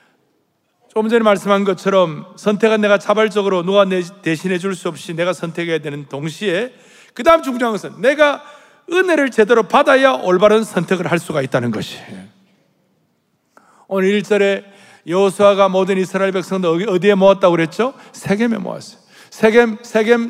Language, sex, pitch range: Korean, male, 165-220 Hz